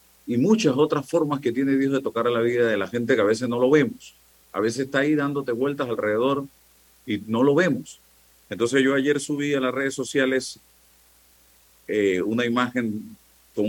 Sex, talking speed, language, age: male, 195 wpm, Spanish, 40-59